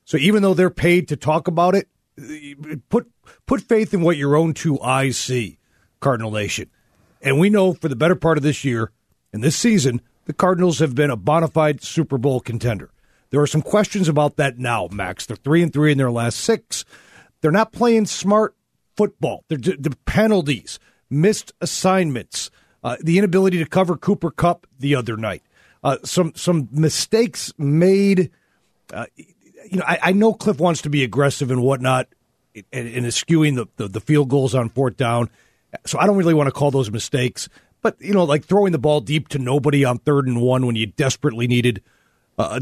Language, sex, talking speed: English, male, 195 wpm